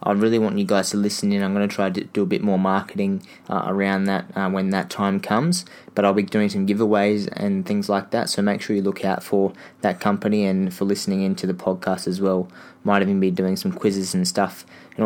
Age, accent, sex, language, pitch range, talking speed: 20-39, Australian, male, English, 95-105 Hz, 245 wpm